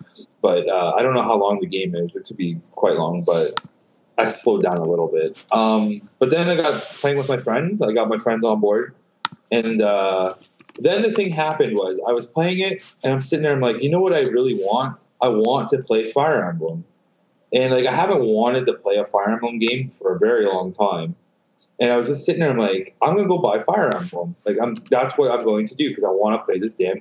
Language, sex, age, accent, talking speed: English, male, 20-39, American, 250 wpm